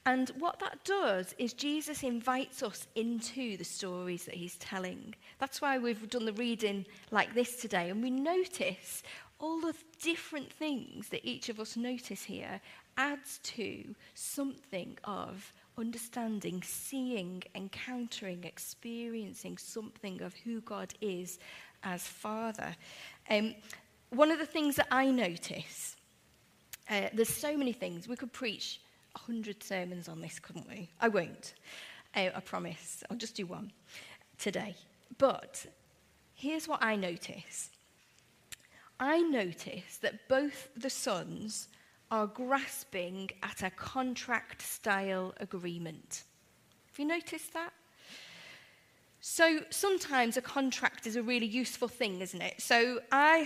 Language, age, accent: English, 40-59, British